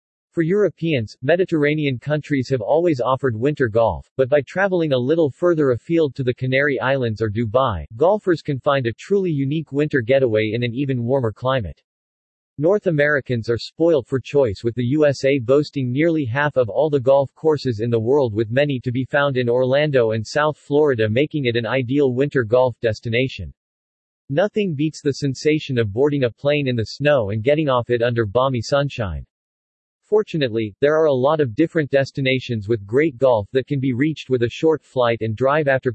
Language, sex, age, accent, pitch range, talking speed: English, male, 40-59, American, 120-150 Hz, 185 wpm